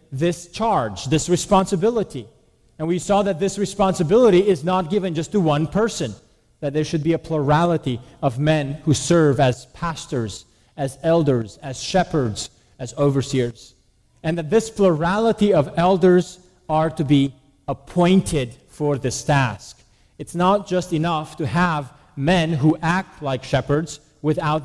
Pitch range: 140-180 Hz